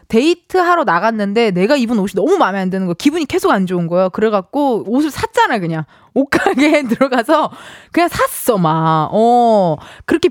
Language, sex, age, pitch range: Korean, female, 20-39, 205-310 Hz